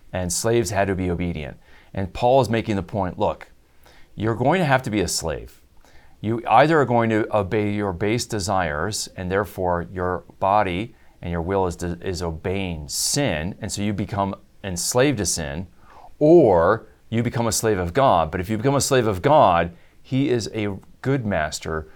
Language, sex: English, male